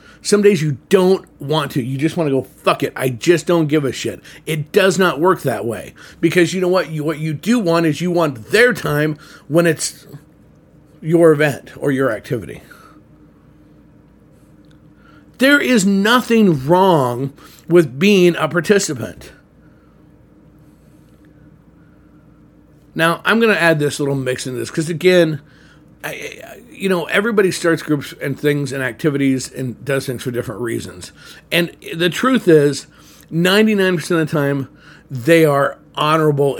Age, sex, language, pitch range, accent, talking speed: 50-69, male, English, 140-170 Hz, American, 155 wpm